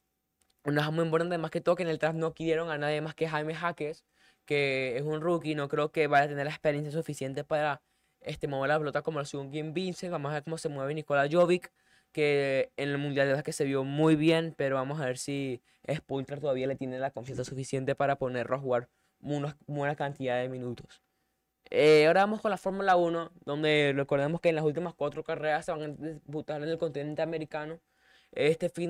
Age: 10-29